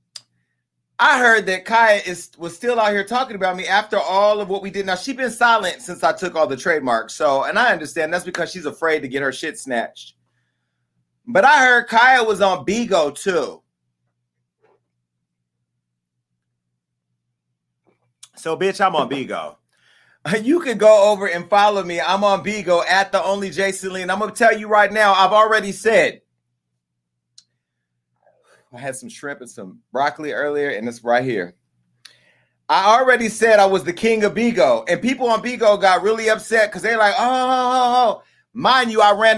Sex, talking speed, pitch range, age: male, 175 wpm, 135-215 Hz, 30-49